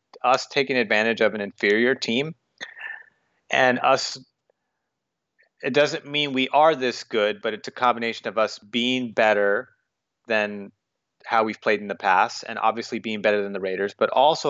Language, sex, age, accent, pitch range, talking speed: English, male, 30-49, American, 100-115 Hz, 165 wpm